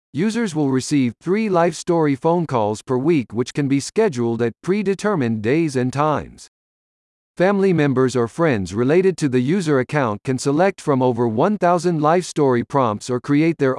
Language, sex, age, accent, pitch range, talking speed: English, male, 50-69, American, 125-180 Hz, 170 wpm